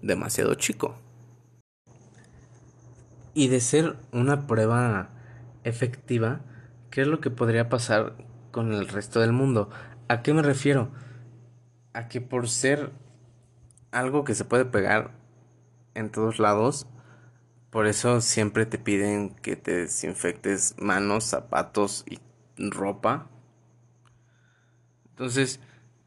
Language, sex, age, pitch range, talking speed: Spanish, male, 20-39, 110-125 Hz, 110 wpm